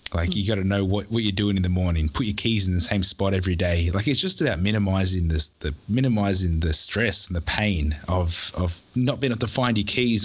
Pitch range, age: 95-115 Hz, 20-39